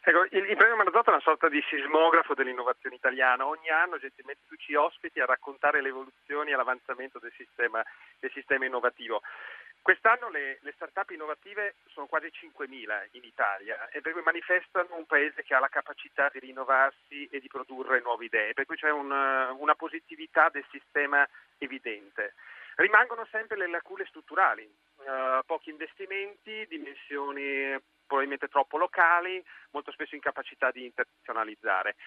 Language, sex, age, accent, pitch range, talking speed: Italian, male, 40-59, native, 135-185 Hz, 150 wpm